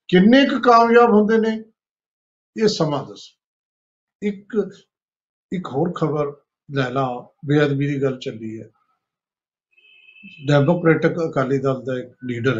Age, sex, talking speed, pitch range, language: 50-69, male, 110 wpm, 140-185 Hz, Punjabi